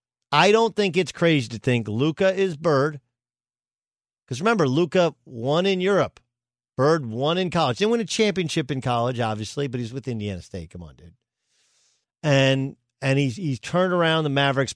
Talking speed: 175 wpm